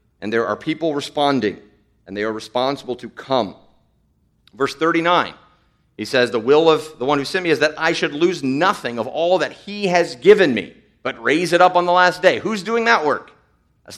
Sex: male